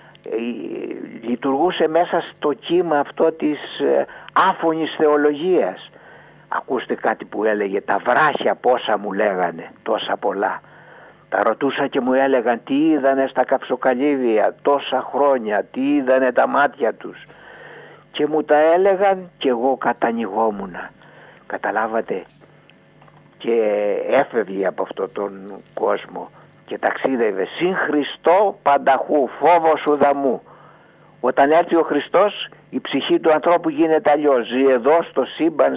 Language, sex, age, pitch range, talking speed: Greek, male, 60-79, 130-165 Hz, 115 wpm